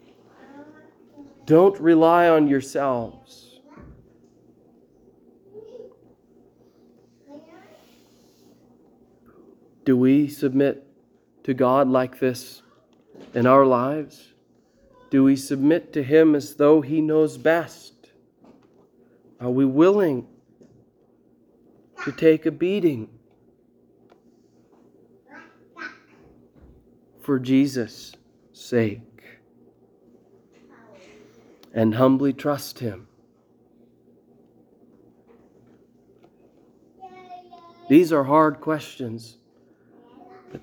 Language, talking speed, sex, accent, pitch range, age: English, 65 wpm, male, American, 130-165 Hz, 40-59